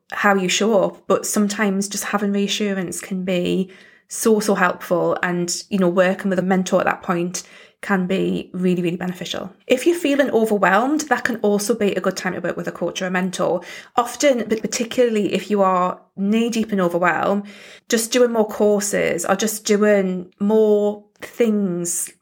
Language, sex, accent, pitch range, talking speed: English, female, British, 185-215 Hz, 180 wpm